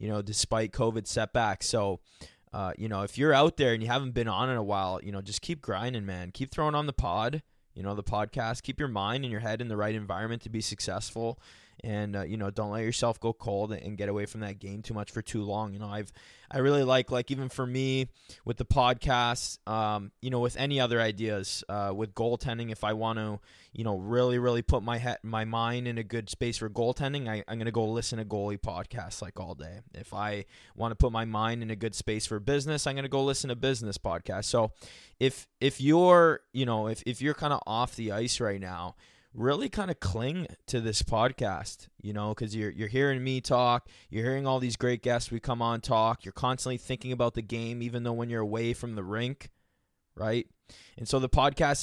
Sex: male